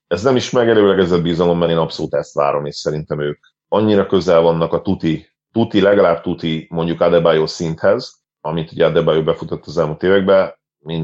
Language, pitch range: Hungarian, 80-90 Hz